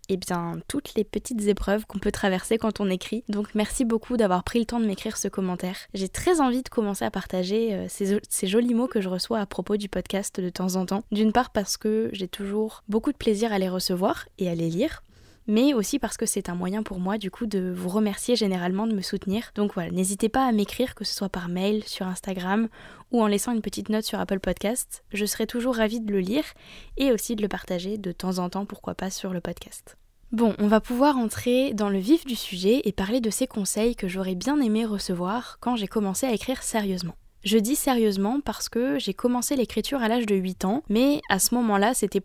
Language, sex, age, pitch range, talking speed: French, female, 10-29, 195-235 Hz, 235 wpm